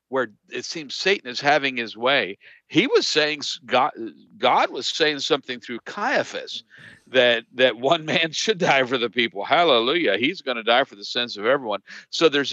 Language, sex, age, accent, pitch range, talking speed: English, male, 50-69, American, 110-160 Hz, 185 wpm